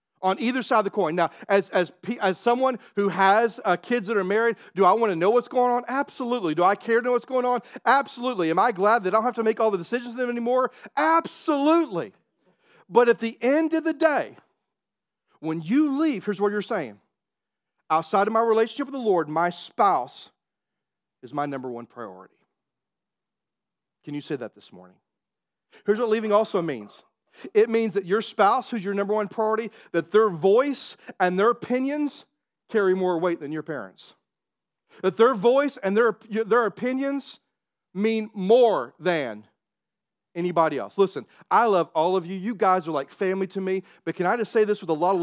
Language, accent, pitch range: English, American, 180-235 Hz